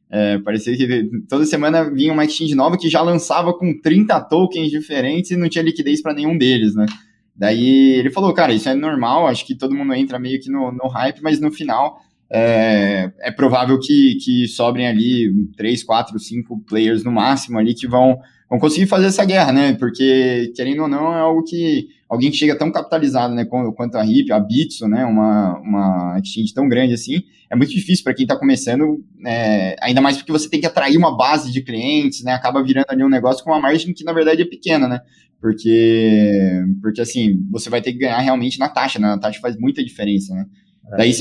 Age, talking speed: 20-39, 210 wpm